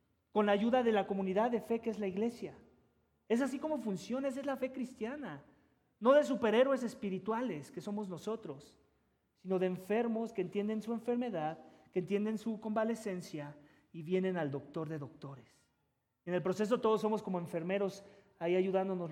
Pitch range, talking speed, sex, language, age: 175-225 Hz, 170 wpm, male, English, 40-59